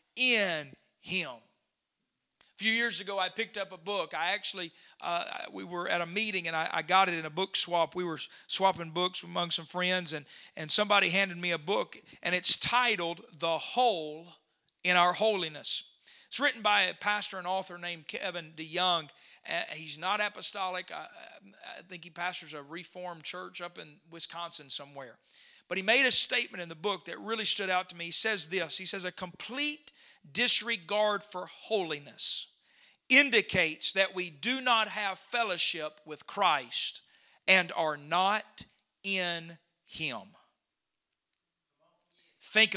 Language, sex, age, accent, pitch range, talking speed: English, male, 40-59, American, 170-215 Hz, 160 wpm